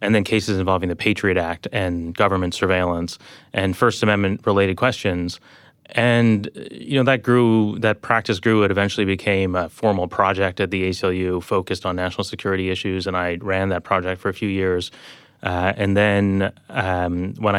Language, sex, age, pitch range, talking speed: English, male, 30-49, 90-105 Hz, 175 wpm